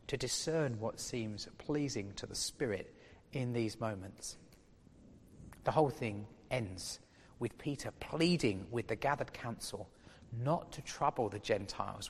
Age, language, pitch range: 40-59, English, 110-150 Hz